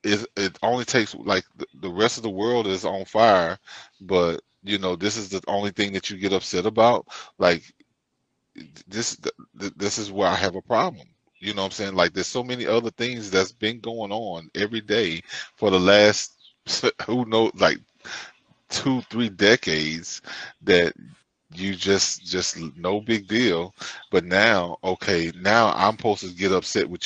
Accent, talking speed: American, 175 wpm